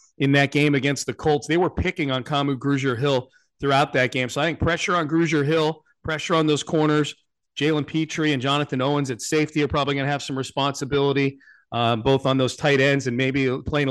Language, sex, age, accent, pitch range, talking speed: English, male, 40-59, American, 130-155 Hz, 215 wpm